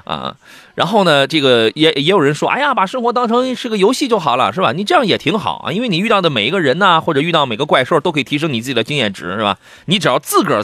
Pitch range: 120-200 Hz